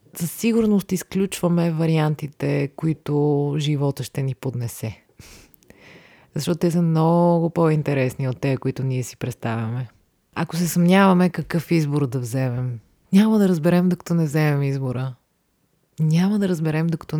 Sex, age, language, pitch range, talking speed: female, 30-49, Bulgarian, 135-170 Hz, 135 wpm